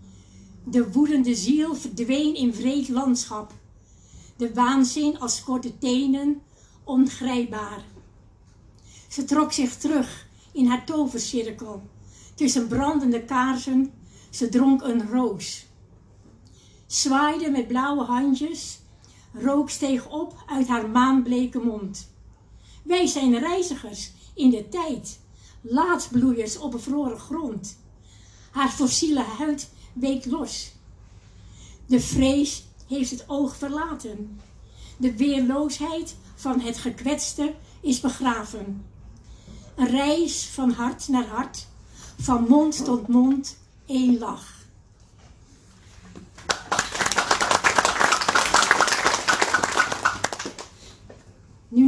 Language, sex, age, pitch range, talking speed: English, female, 60-79, 165-275 Hz, 90 wpm